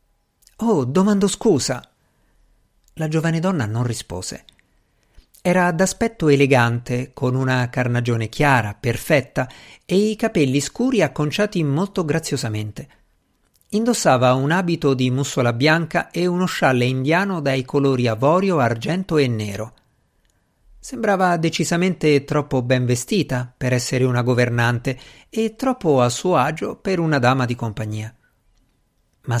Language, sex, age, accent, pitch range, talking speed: Italian, male, 50-69, native, 120-175 Hz, 120 wpm